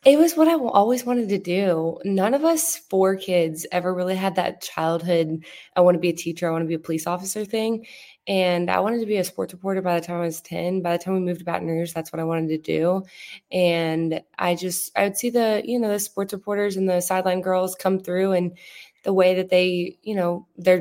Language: English